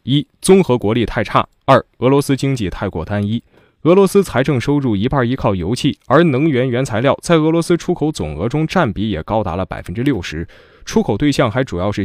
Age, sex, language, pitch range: 20-39, male, Chinese, 100-145 Hz